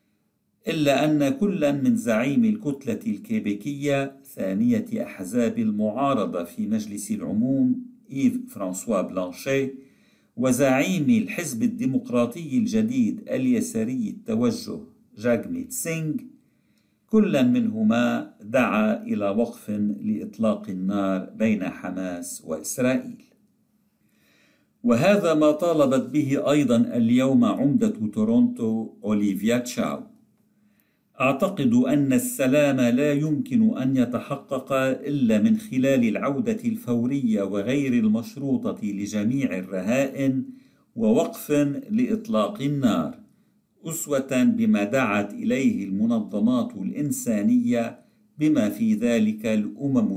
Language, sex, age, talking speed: Arabic, male, 50-69, 85 wpm